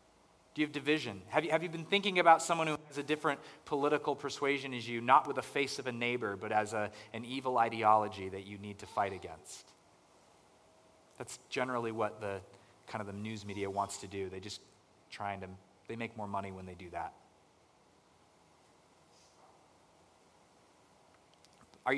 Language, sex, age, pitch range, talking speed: English, male, 30-49, 115-150 Hz, 175 wpm